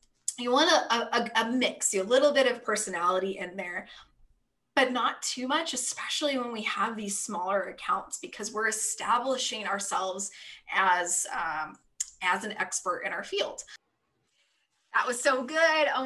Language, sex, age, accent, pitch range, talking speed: English, female, 20-39, American, 205-265 Hz, 160 wpm